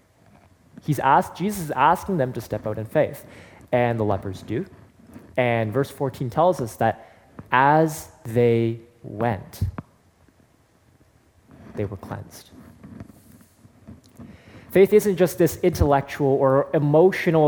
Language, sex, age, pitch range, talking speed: English, male, 20-39, 115-155 Hz, 115 wpm